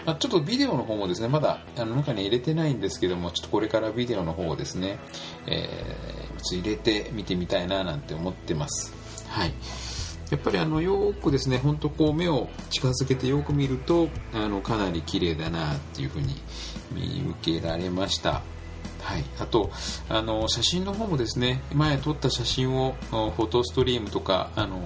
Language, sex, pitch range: Japanese, male, 90-145 Hz